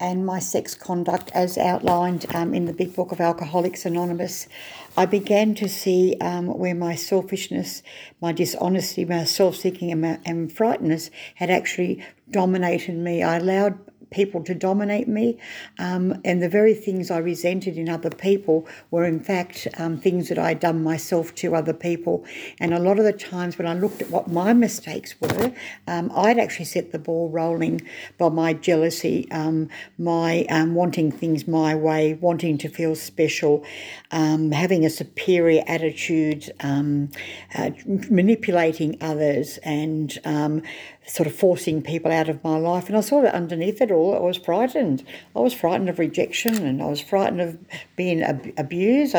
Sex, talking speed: female, 170 wpm